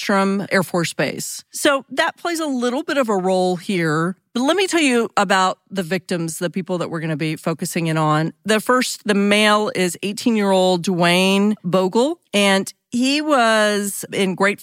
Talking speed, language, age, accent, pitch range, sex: 190 wpm, English, 40-59, American, 170-210 Hz, female